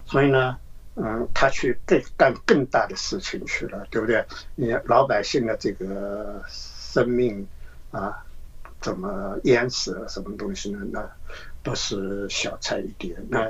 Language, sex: Chinese, male